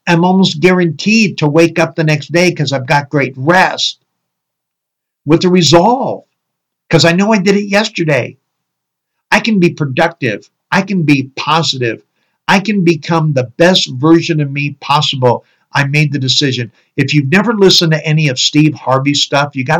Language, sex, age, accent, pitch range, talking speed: English, male, 50-69, American, 130-170 Hz, 175 wpm